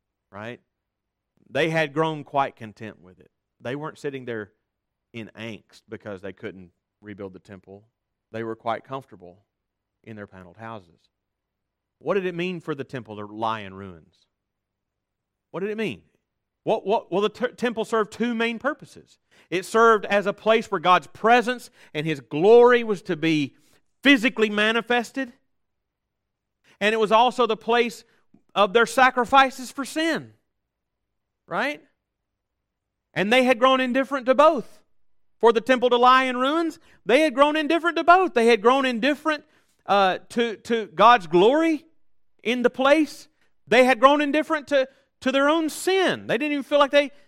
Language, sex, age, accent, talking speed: English, male, 40-59, American, 165 wpm